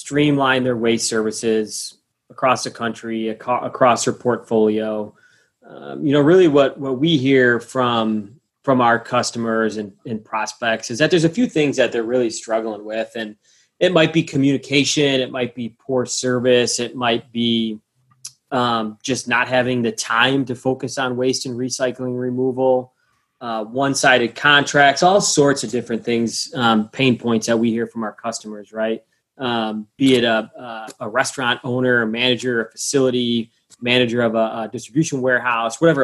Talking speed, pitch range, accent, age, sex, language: 165 wpm, 115-135 Hz, American, 20-39, male, English